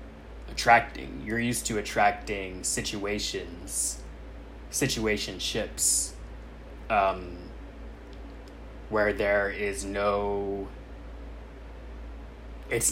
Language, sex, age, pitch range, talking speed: English, male, 20-39, 70-100 Hz, 60 wpm